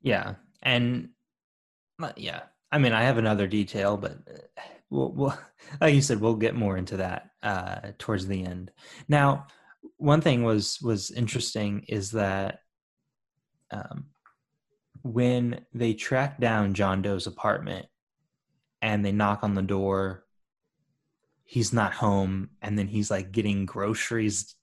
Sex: male